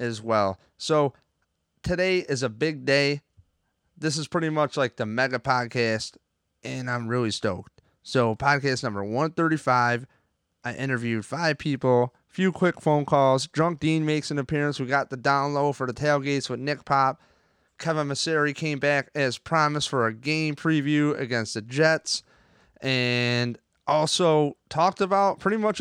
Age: 30-49